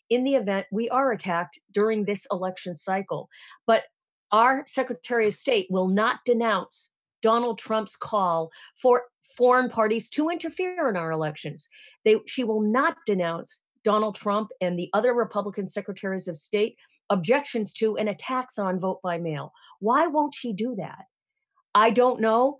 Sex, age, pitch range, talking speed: female, 40-59, 180-230 Hz, 155 wpm